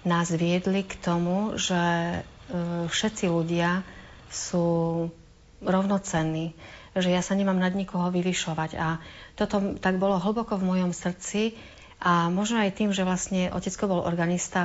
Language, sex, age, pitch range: Slovak, female, 40-59, 170-190 Hz